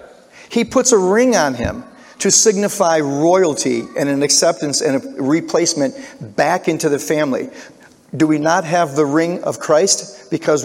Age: 40-59